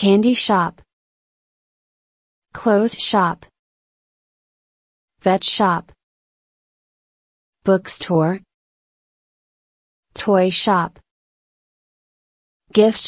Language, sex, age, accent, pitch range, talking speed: English, female, 30-49, American, 170-205 Hz, 45 wpm